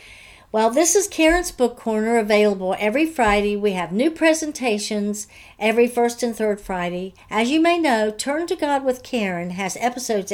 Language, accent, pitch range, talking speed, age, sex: English, American, 190-255 Hz, 170 wpm, 60-79, female